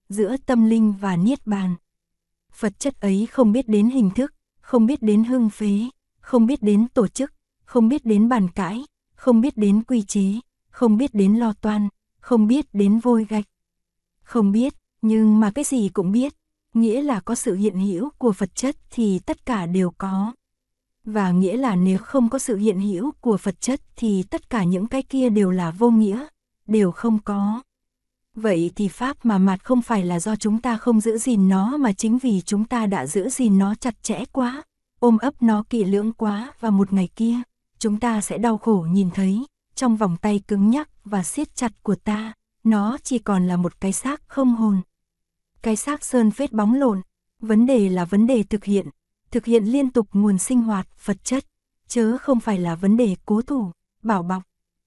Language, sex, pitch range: Korean, female, 200-245 Hz